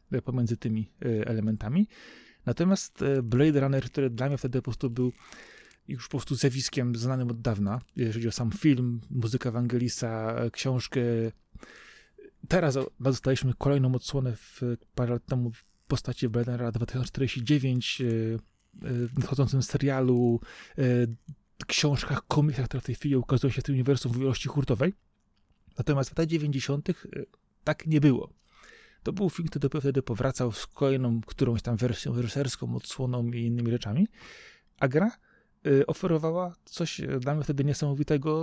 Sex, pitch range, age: male, 120-145 Hz, 30-49